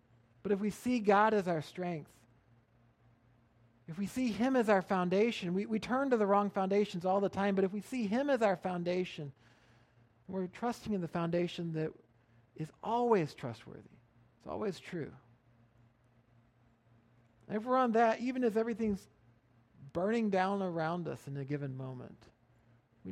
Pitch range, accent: 115-195 Hz, American